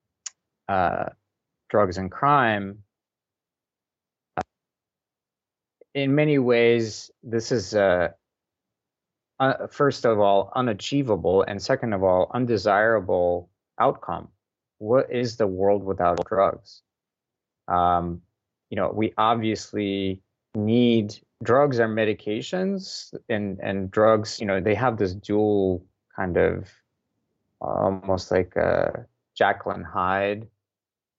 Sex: male